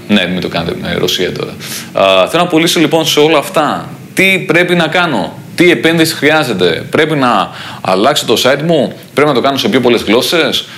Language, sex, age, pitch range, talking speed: Greek, male, 30-49, 105-155 Hz, 195 wpm